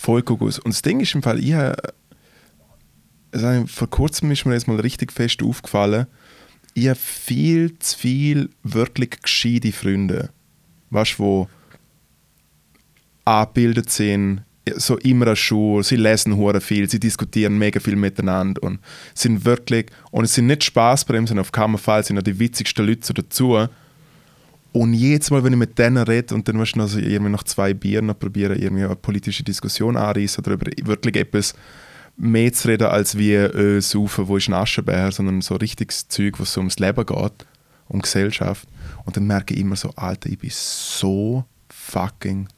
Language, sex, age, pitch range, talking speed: German, male, 20-39, 100-125 Hz, 170 wpm